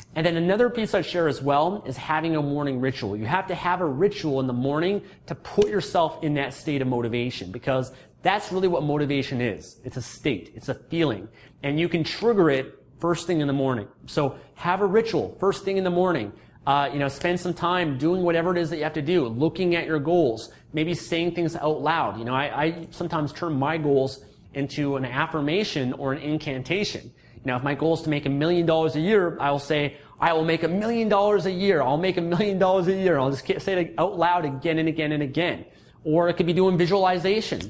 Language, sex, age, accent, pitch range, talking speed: English, male, 30-49, American, 140-180 Hz, 230 wpm